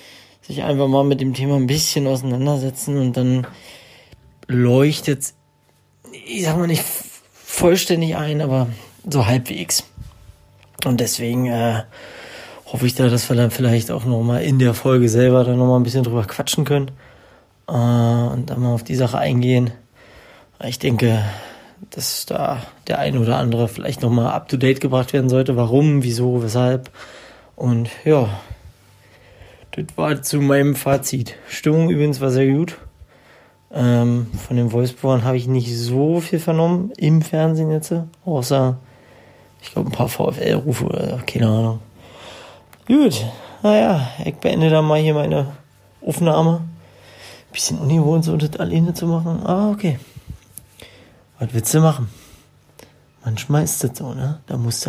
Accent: German